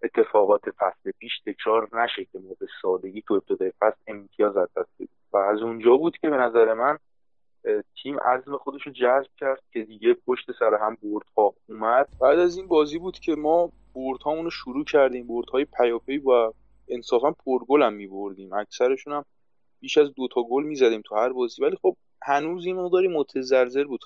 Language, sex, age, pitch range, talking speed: English, male, 30-49, 120-195 Hz, 175 wpm